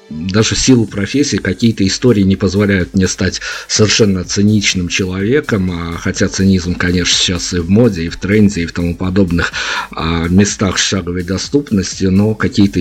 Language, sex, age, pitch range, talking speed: Russian, male, 50-69, 90-105 Hz, 155 wpm